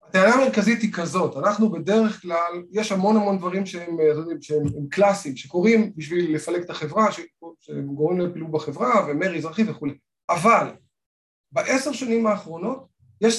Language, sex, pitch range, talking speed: Hebrew, male, 165-225 Hz, 145 wpm